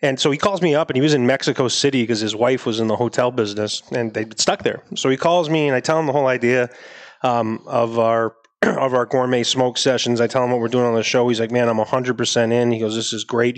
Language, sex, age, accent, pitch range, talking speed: English, male, 30-49, American, 120-135 Hz, 280 wpm